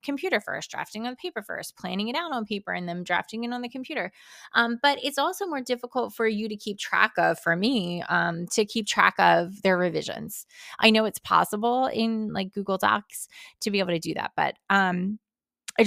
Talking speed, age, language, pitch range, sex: 210 wpm, 20-39, English, 180-230 Hz, female